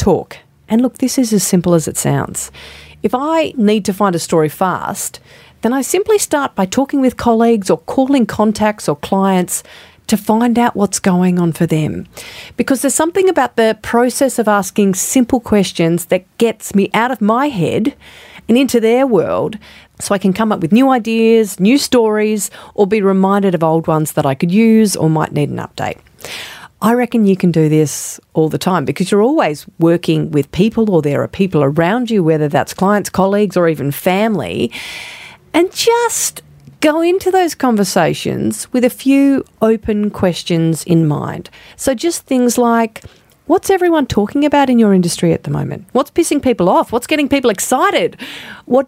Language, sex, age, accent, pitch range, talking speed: English, female, 40-59, Australian, 175-255 Hz, 185 wpm